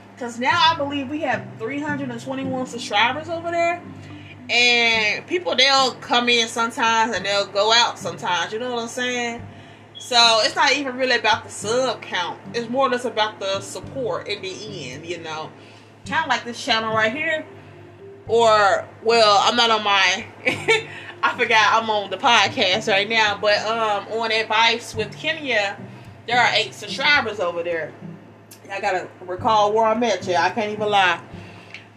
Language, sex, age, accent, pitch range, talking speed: English, female, 20-39, American, 195-240 Hz, 175 wpm